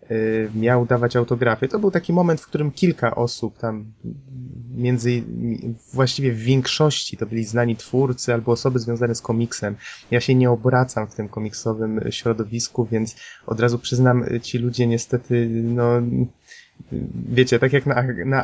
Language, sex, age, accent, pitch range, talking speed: Polish, male, 20-39, native, 115-135 Hz, 150 wpm